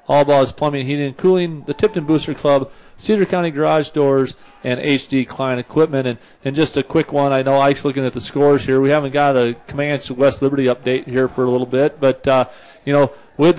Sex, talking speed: male, 215 wpm